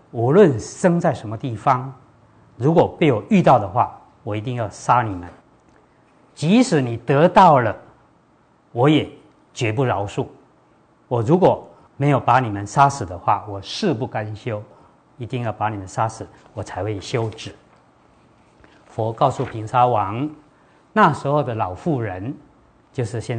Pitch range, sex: 105-145 Hz, male